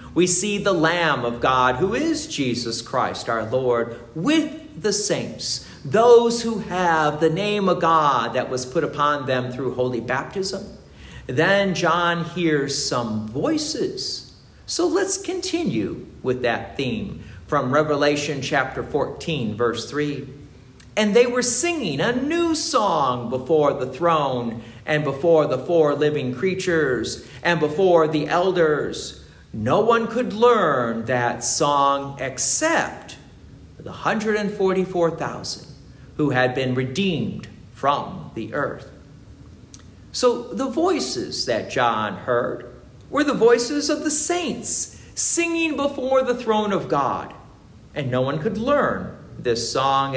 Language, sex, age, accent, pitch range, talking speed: English, male, 50-69, American, 125-205 Hz, 130 wpm